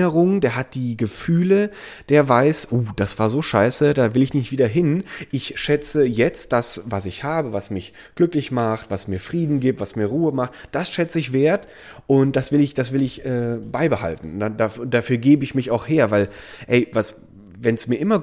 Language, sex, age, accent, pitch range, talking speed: German, male, 30-49, German, 110-150 Hz, 215 wpm